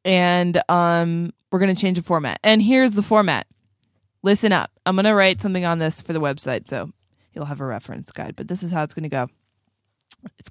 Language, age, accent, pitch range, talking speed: English, 20-39, American, 155-200 Hz, 225 wpm